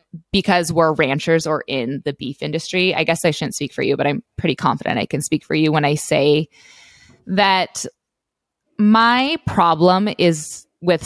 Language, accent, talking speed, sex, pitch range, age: English, American, 175 wpm, female, 160-215 Hz, 20-39